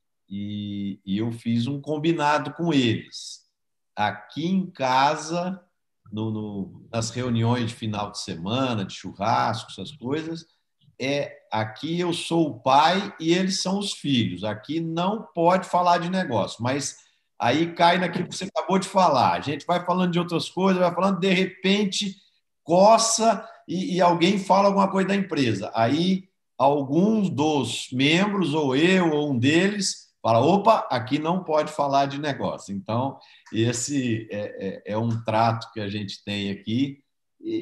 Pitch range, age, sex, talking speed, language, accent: 100-170 Hz, 50-69, male, 150 wpm, Portuguese, Brazilian